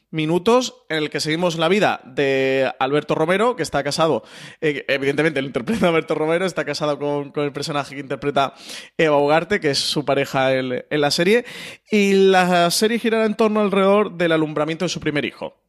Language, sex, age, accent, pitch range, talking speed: Spanish, male, 30-49, Spanish, 140-165 Hz, 190 wpm